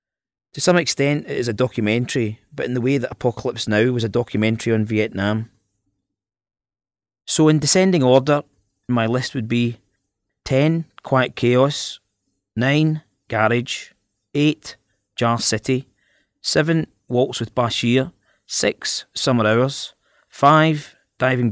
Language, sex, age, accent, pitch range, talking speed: English, male, 30-49, British, 110-130 Hz, 125 wpm